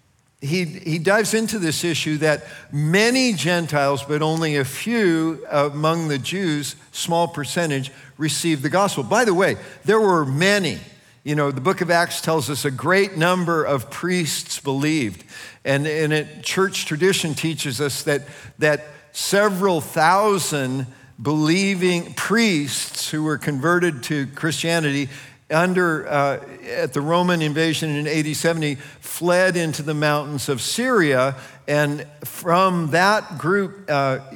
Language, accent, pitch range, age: English, American, 130-170 Hz, 50-69